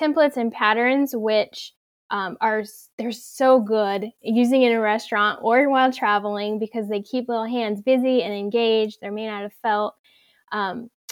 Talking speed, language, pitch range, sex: 160 wpm, English, 220-255 Hz, female